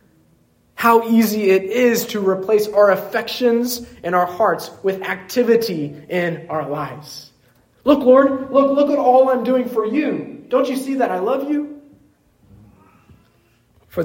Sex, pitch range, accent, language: male, 145-205 Hz, American, English